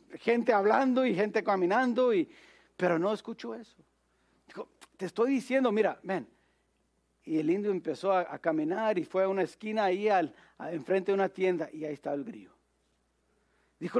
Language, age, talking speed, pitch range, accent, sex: English, 50-69, 170 wpm, 175-240 Hz, Mexican, male